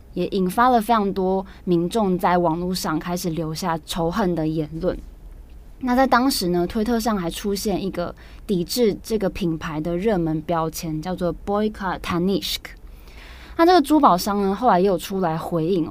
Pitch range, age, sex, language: 170-215 Hz, 20-39, female, Chinese